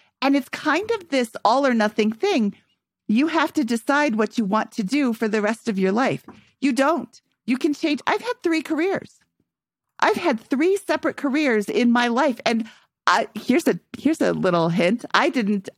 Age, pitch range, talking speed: 40-59, 195-280 Hz, 185 wpm